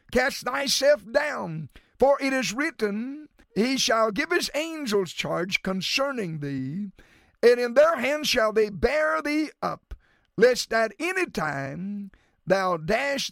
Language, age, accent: English, 50-69, American